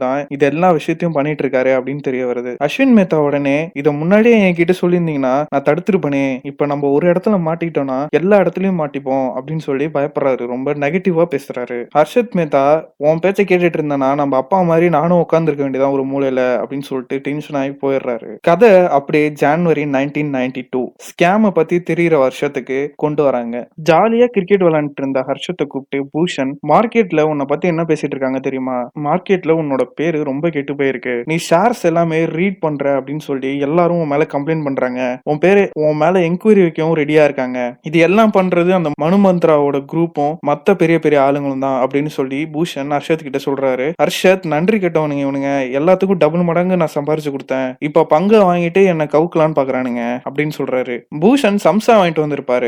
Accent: native